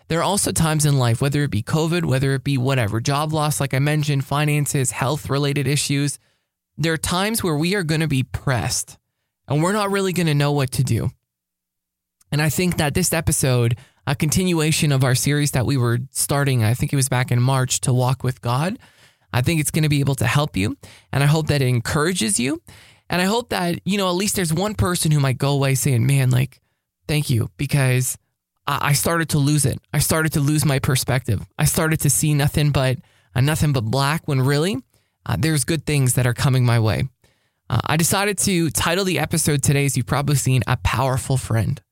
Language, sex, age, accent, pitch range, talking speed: English, male, 20-39, American, 125-155 Hz, 220 wpm